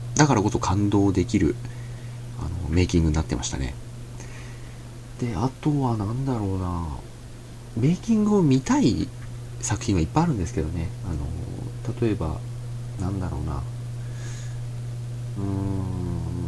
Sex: male